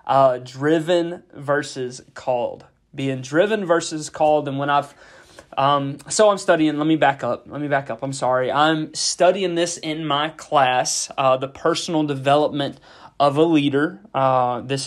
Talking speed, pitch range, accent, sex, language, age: 160 wpm, 130-155 Hz, American, male, English, 20-39